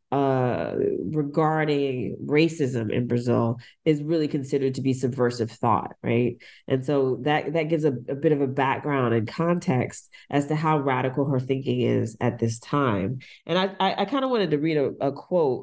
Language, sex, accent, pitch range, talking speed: English, female, American, 135-185 Hz, 185 wpm